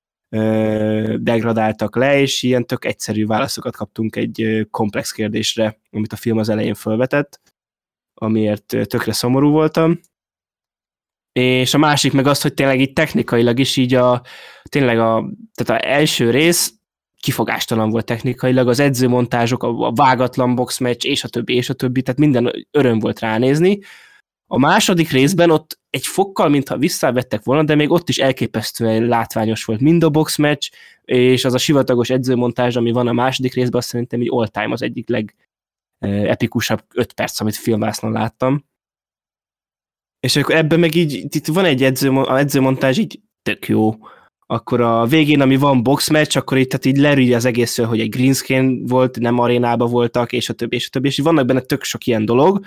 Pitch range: 115-140 Hz